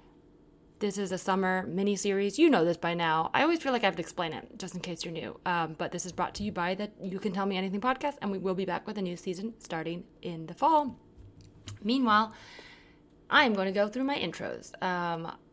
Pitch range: 175-225 Hz